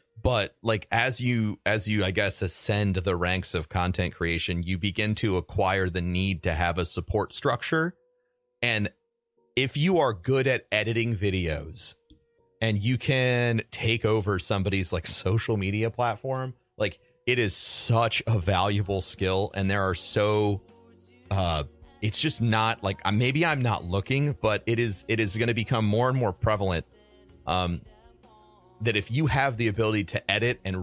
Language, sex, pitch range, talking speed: English, male, 90-115 Hz, 165 wpm